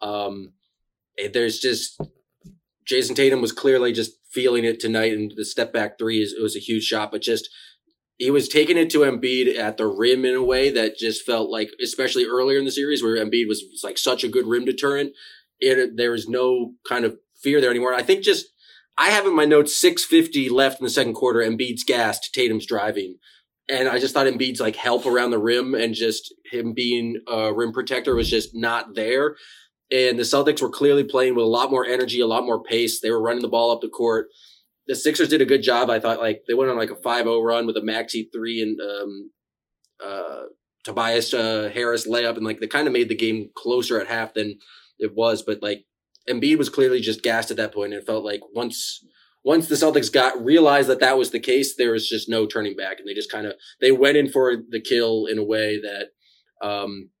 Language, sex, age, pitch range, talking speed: English, male, 20-39, 110-140 Hz, 225 wpm